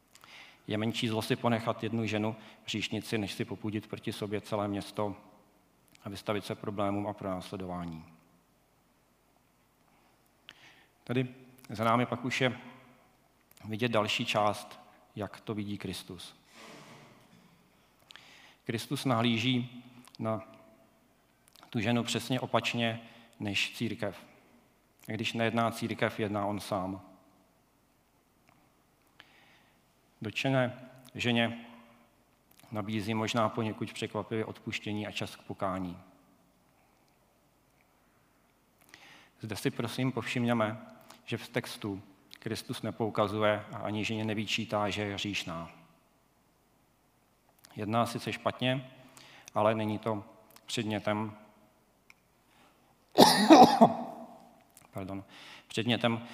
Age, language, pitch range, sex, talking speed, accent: 40-59, Czech, 105-115 Hz, male, 90 wpm, native